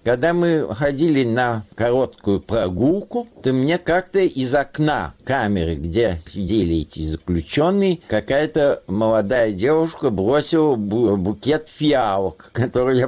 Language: Russian